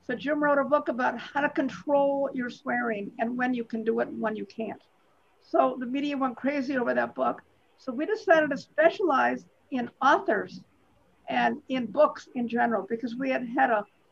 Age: 50-69